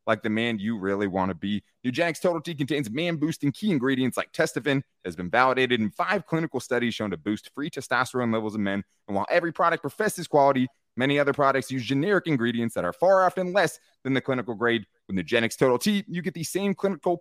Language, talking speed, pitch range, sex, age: English, 220 wpm, 120-165 Hz, male, 20-39